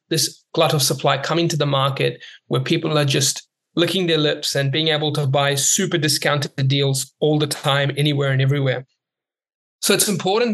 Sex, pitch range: male, 135-160 Hz